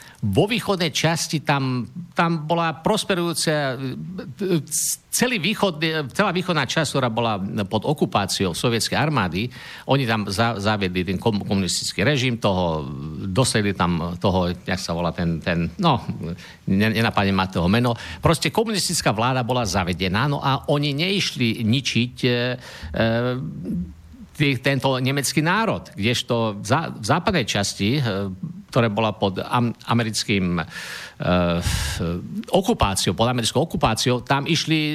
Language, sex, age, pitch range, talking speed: Slovak, male, 50-69, 105-155 Hz, 120 wpm